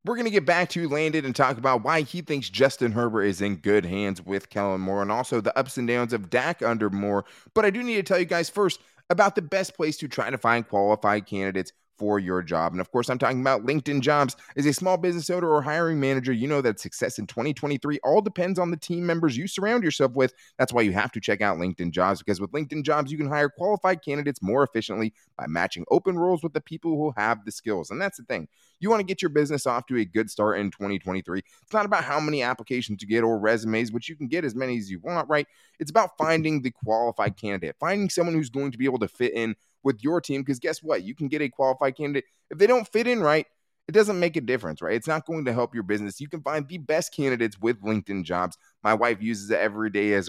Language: English